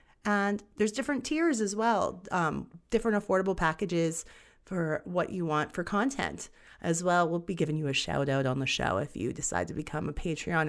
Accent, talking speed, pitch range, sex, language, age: American, 195 wpm, 160-210 Hz, female, English, 30-49